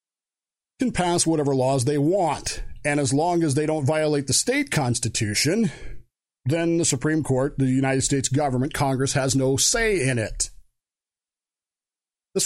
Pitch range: 140-175 Hz